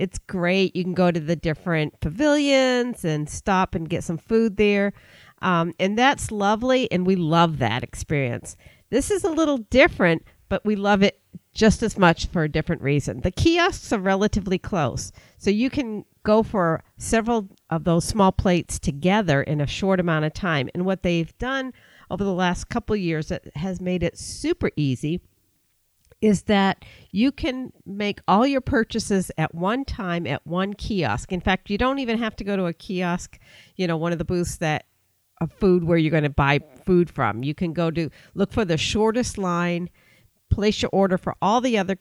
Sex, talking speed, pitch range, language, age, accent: female, 195 wpm, 160-210 Hz, English, 50-69, American